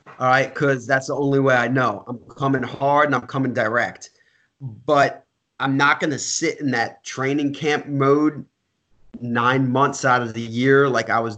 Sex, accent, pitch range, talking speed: male, American, 120-140 Hz, 190 wpm